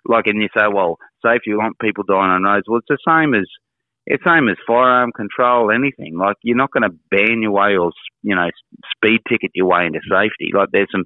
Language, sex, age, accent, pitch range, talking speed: English, male, 30-49, Australian, 95-110 Hz, 235 wpm